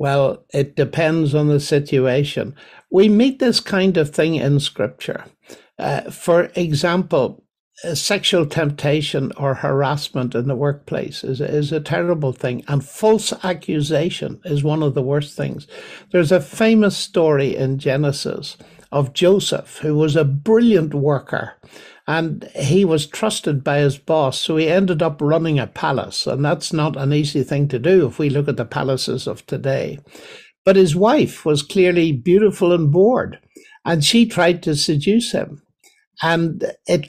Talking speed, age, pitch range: 160 wpm, 60-79, 145-185 Hz